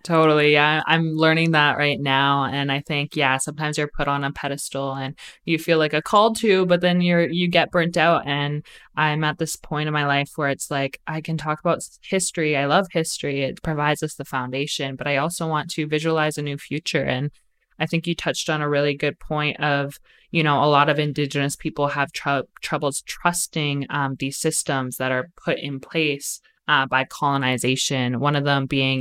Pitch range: 135-155 Hz